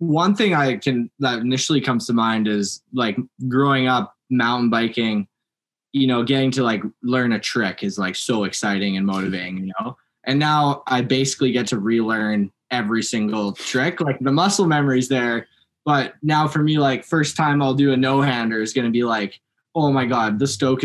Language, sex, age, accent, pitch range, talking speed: English, male, 10-29, American, 115-140 Hz, 195 wpm